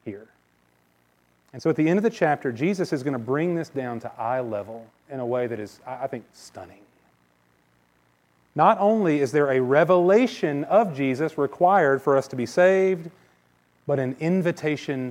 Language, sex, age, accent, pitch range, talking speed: English, male, 30-49, American, 105-155 Hz, 175 wpm